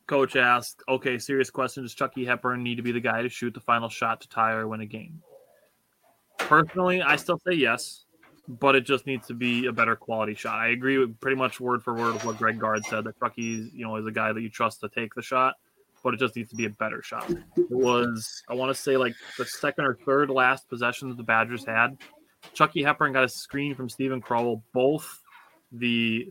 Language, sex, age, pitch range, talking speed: English, male, 20-39, 115-135 Hz, 235 wpm